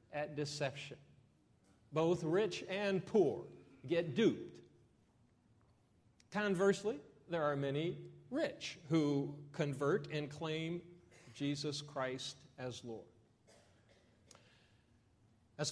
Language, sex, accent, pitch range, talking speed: English, male, American, 140-185 Hz, 85 wpm